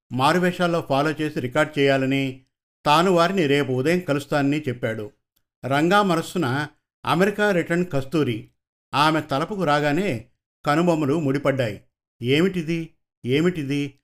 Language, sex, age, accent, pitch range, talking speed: Telugu, male, 50-69, native, 135-170 Hz, 100 wpm